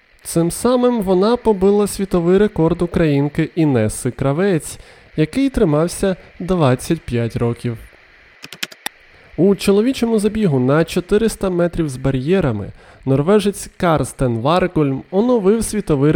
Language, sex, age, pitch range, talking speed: Ukrainian, male, 20-39, 130-195 Hz, 95 wpm